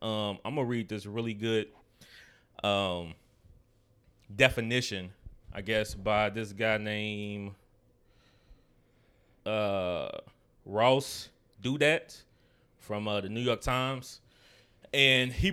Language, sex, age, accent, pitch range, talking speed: English, male, 20-39, American, 100-120 Hz, 105 wpm